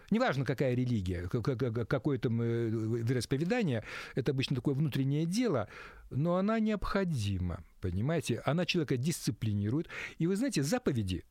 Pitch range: 130-180 Hz